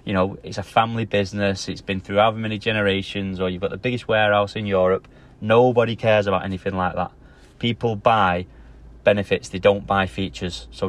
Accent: British